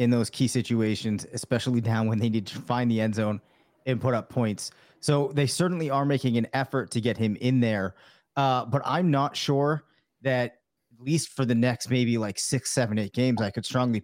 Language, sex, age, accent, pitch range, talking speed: English, male, 30-49, American, 115-130 Hz, 215 wpm